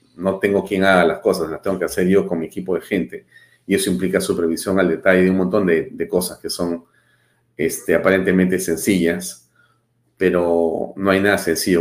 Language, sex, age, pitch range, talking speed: Spanish, male, 40-59, 85-115 Hz, 195 wpm